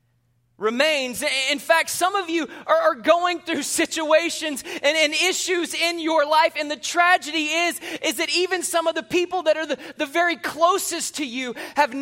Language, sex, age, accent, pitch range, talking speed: English, male, 20-39, American, 185-310 Hz, 170 wpm